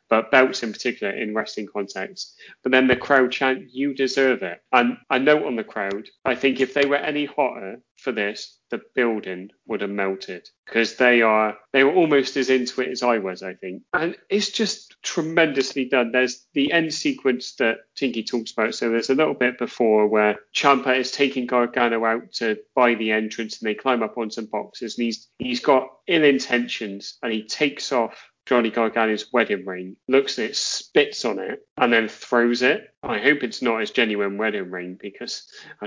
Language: English